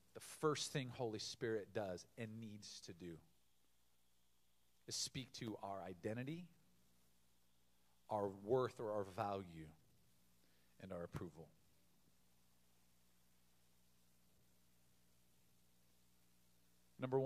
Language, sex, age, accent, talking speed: English, male, 40-59, American, 85 wpm